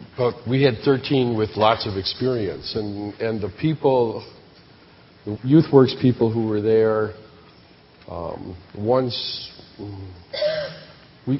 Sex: male